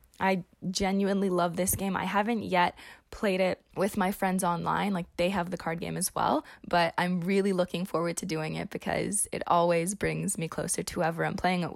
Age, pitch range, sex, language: 20-39, 170-195 Hz, female, English